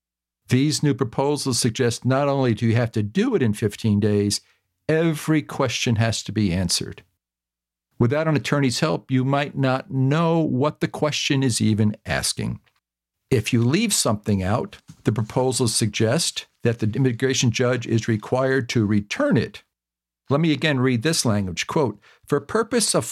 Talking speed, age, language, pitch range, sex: 160 wpm, 50-69, English, 110-145 Hz, male